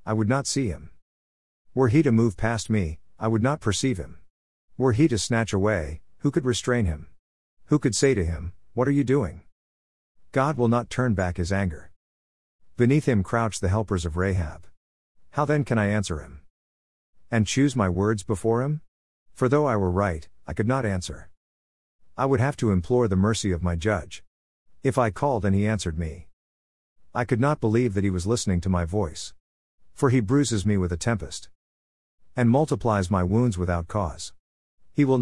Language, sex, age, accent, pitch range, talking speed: English, male, 50-69, American, 85-120 Hz, 190 wpm